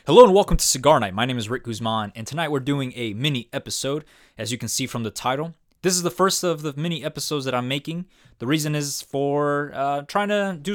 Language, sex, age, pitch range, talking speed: English, male, 20-39, 110-145 Hz, 245 wpm